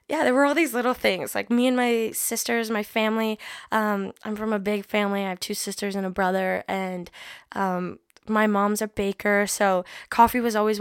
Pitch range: 195-230 Hz